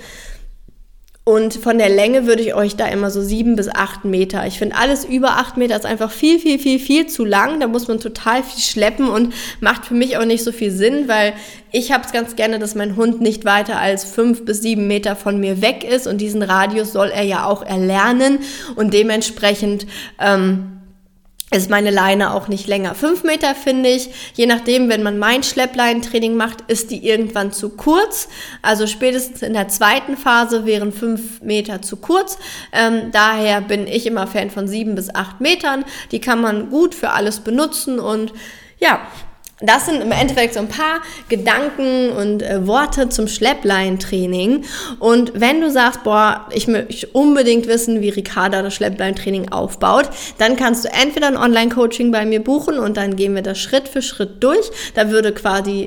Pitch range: 205-255 Hz